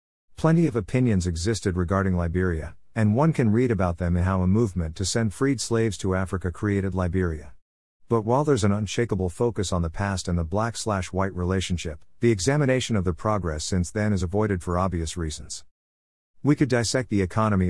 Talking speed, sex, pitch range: 185 wpm, male, 90-115 Hz